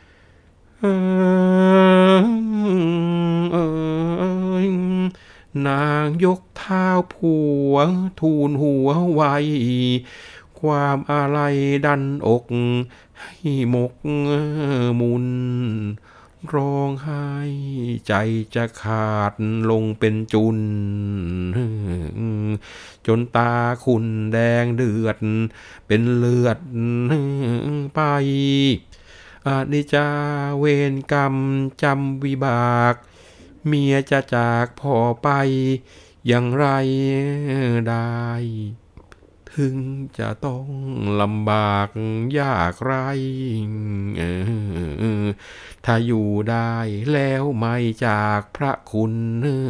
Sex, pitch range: male, 110-140 Hz